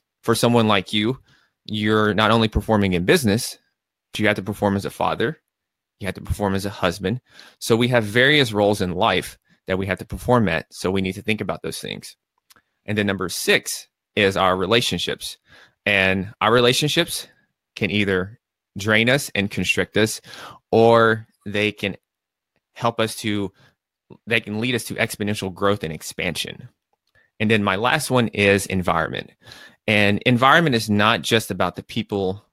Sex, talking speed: male, 170 wpm